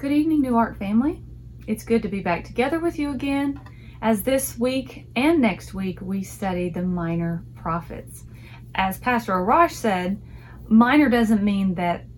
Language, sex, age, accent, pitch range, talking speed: English, female, 30-49, American, 170-240 Hz, 165 wpm